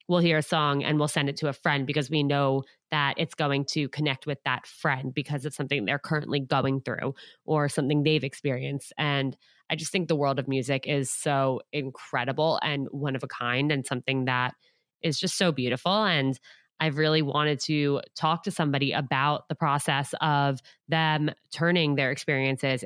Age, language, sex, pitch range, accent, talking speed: 20-39, English, female, 140-165 Hz, American, 190 wpm